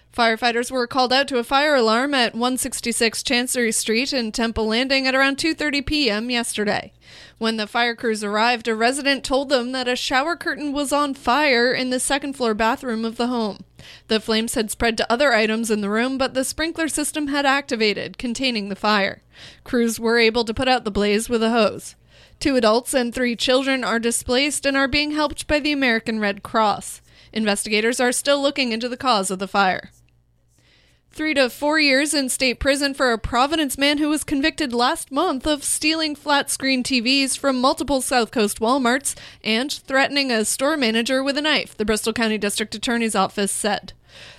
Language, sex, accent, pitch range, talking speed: English, female, American, 225-275 Hz, 190 wpm